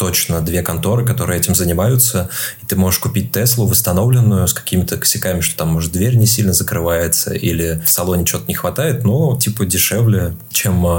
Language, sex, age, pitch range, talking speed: Russian, male, 20-39, 90-110 Hz, 175 wpm